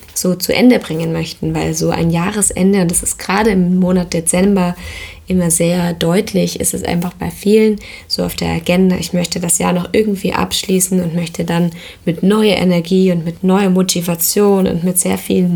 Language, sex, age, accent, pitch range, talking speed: German, female, 20-39, German, 170-195 Hz, 185 wpm